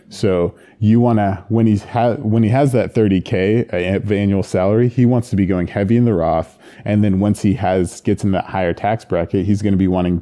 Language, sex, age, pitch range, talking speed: English, male, 20-39, 90-105 Hz, 235 wpm